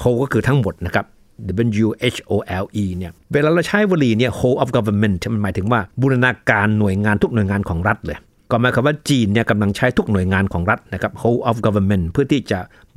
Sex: male